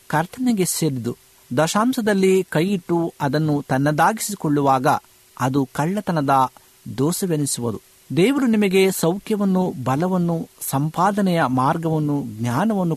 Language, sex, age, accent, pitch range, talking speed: Kannada, male, 50-69, native, 135-185 Hz, 75 wpm